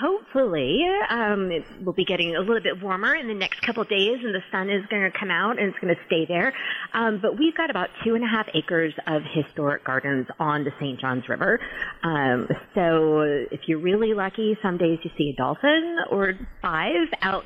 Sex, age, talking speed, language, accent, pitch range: female, 30-49, 215 wpm, English, American, 150-200 Hz